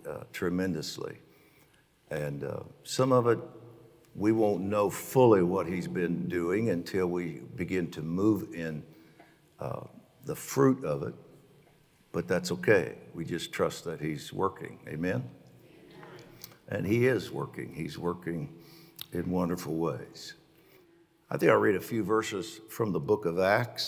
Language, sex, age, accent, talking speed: English, male, 60-79, American, 145 wpm